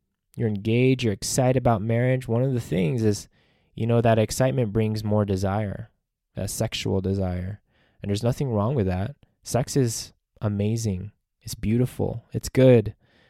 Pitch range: 105-140 Hz